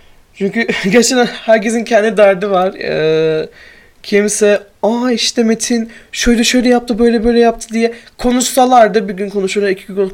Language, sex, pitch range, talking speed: Turkish, male, 175-215 Hz, 140 wpm